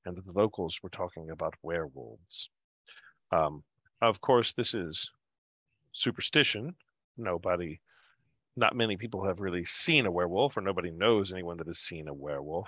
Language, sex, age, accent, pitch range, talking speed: English, male, 40-59, American, 85-115 Hz, 150 wpm